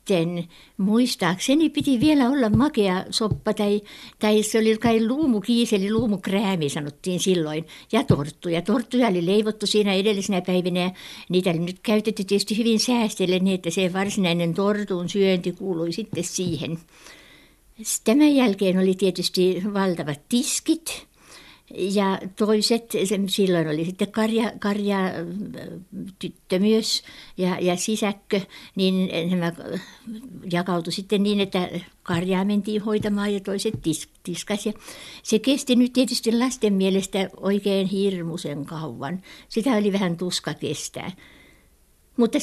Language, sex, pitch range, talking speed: Finnish, female, 180-220 Hz, 125 wpm